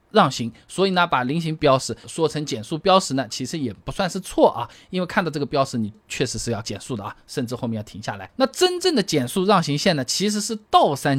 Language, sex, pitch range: Chinese, male, 125-190 Hz